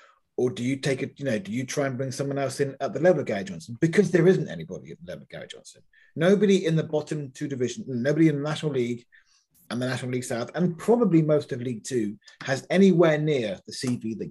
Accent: British